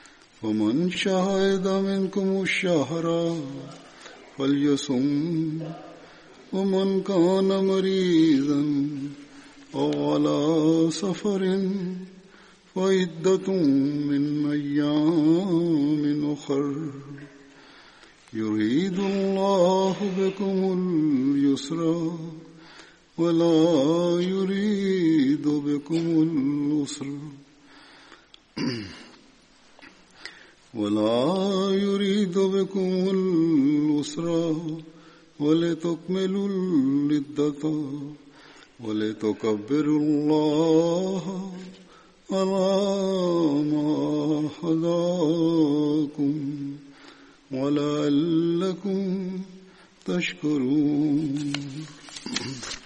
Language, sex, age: Malayalam, male, 50-69